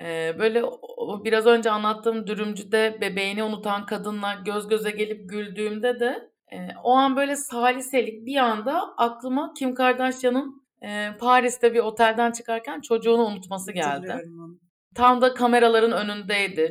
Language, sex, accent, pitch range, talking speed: Turkish, female, native, 195-245 Hz, 135 wpm